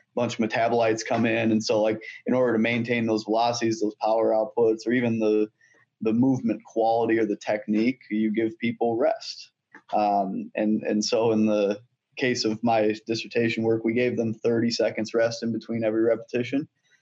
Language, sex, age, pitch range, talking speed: English, male, 20-39, 110-115 Hz, 180 wpm